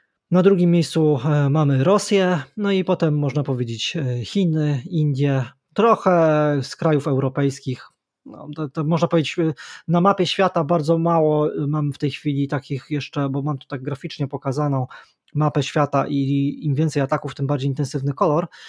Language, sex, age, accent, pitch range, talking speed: Polish, male, 20-39, native, 130-165 Hz, 145 wpm